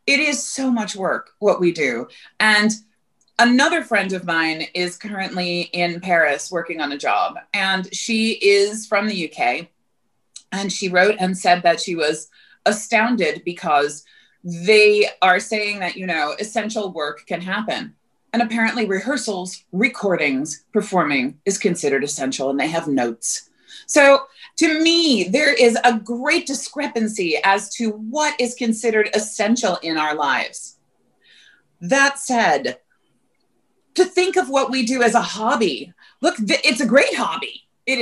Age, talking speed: 30-49, 145 wpm